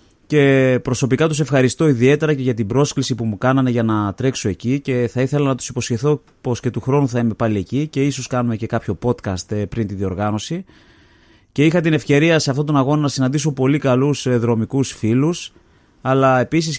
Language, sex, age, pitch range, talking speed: Greek, male, 30-49, 115-140 Hz, 195 wpm